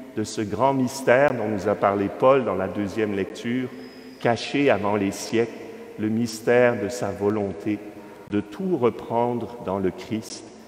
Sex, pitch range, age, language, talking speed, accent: male, 105-140 Hz, 50-69, French, 155 wpm, French